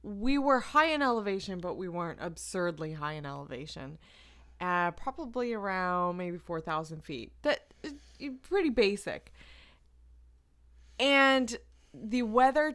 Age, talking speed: 20-39, 115 wpm